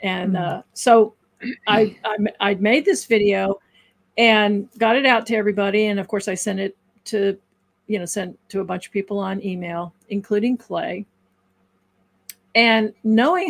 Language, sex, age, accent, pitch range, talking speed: English, female, 50-69, American, 185-230 Hz, 150 wpm